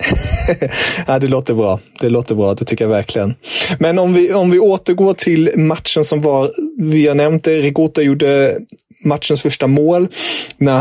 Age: 30-49